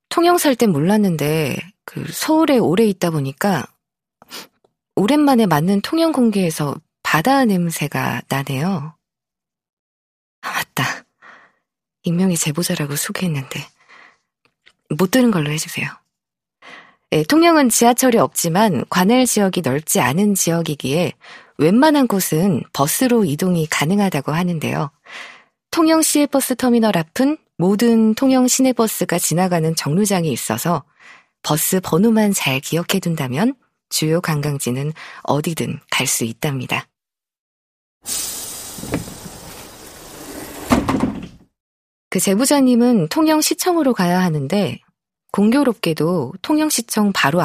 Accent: native